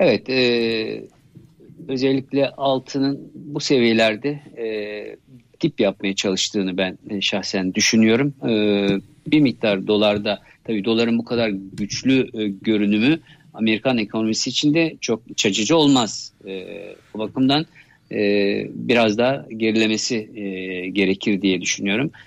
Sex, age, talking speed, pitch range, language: male, 50-69, 115 wpm, 105-140 Hz, Turkish